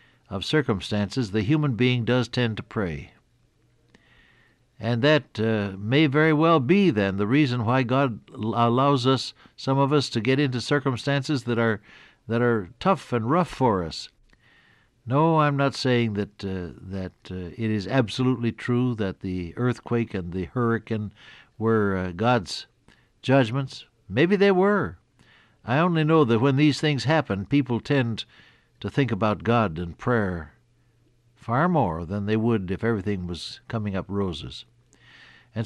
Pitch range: 105-130 Hz